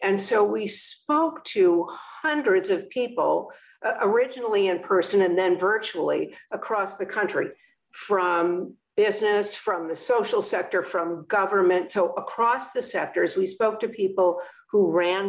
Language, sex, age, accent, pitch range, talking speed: English, female, 50-69, American, 175-245 Hz, 140 wpm